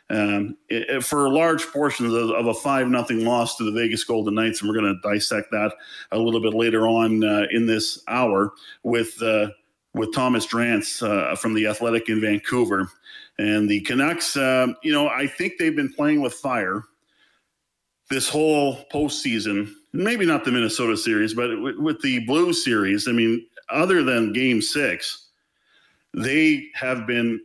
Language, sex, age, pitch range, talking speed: English, male, 40-59, 110-140 Hz, 175 wpm